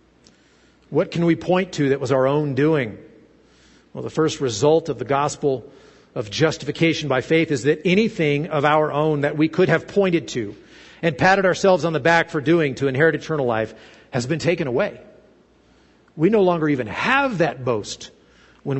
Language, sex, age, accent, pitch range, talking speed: English, male, 50-69, American, 140-195 Hz, 180 wpm